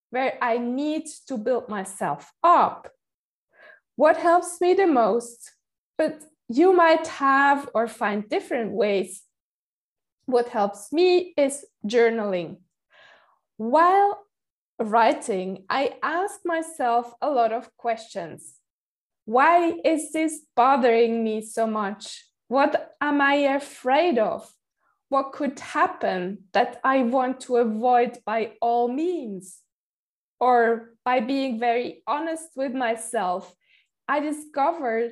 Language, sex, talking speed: English, female, 115 wpm